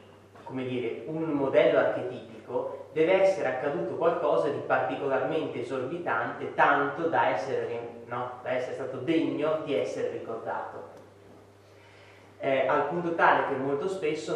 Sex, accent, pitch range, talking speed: male, native, 120-170 Hz, 115 wpm